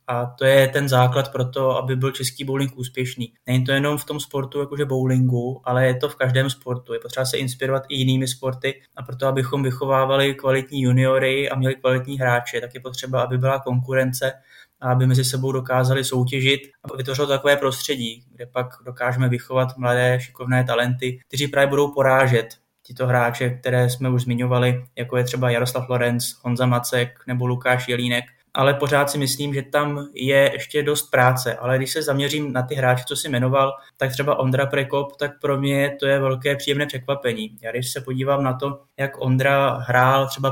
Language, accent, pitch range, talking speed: Czech, native, 125-135 Hz, 190 wpm